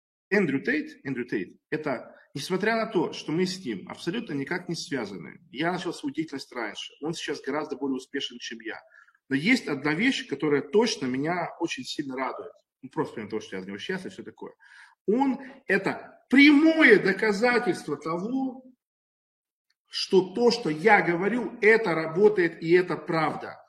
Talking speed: 160 wpm